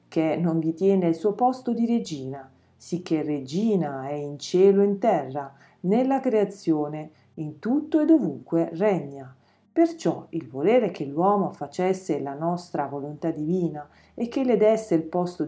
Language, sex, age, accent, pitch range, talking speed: Italian, female, 40-59, native, 150-225 Hz, 155 wpm